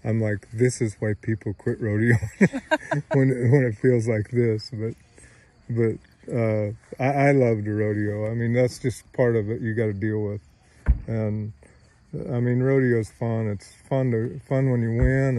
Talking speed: 180 wpm